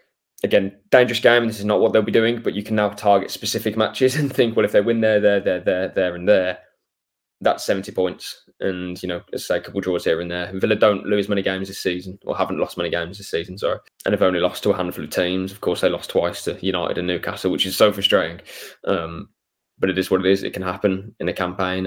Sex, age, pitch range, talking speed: male, 20-39, 95-110 Hz, 260 wpm